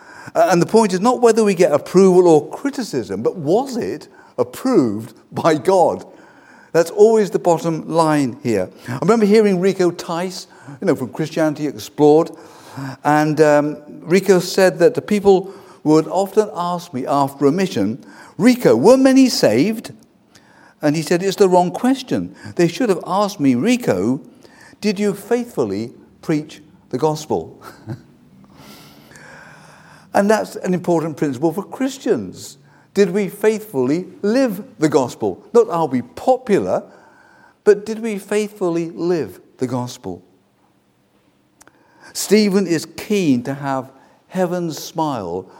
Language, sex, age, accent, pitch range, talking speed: English, male, 50-69, British, 150-205 Hz, 135 wpm